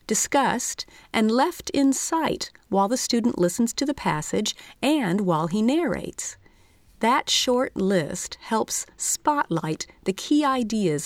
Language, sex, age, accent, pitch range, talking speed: English, female, 40-59, American, 180-255 Hz, 130 wpm